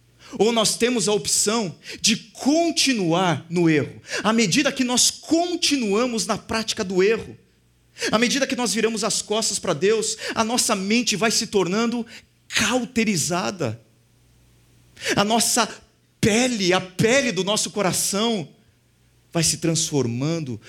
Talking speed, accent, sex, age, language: 130 wpm, Brazilian, male, 40-59, Portuguese